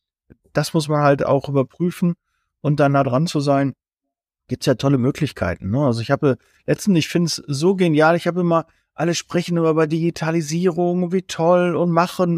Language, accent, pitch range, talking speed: German, German, 135-175 Hz, 185 wpm